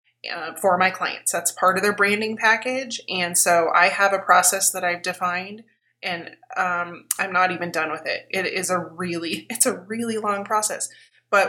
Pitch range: 180-215 Hz